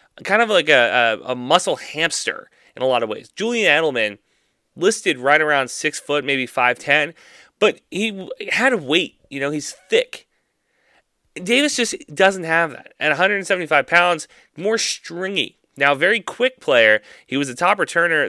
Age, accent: 30-49, American